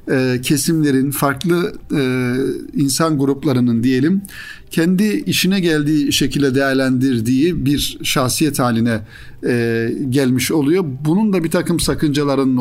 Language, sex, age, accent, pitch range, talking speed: Turkish, male, 50-69, native, 130-170 Hz, 95 wpm